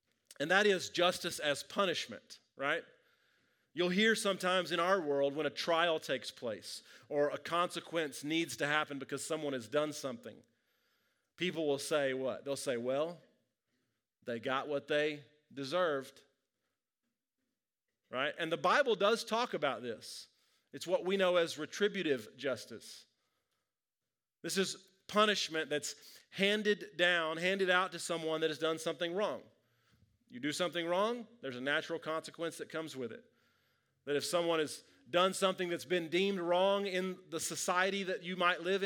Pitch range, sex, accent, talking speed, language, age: 145-185 Hz, male, American, 155 wpm, English, 40-59